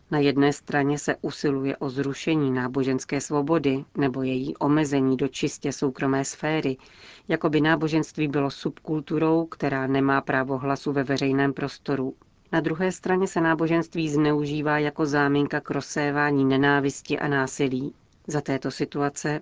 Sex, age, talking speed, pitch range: female, 40-59, 135 wpm, 135-155 Hz